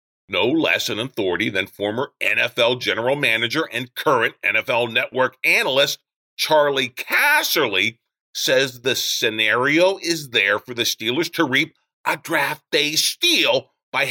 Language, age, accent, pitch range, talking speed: English, 40-59, American, 120-185 Hz, 130 wpm